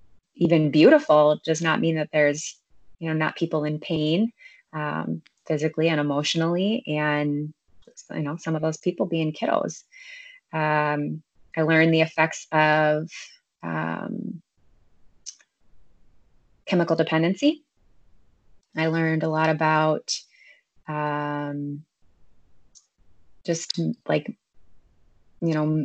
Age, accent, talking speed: 20-39, American, 105 wpm